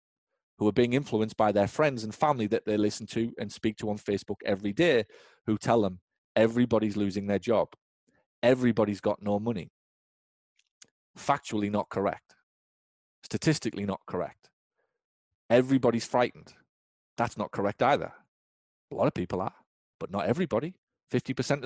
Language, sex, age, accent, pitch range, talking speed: English, male, 30-49, British, 110-160 Hz, 145 wpm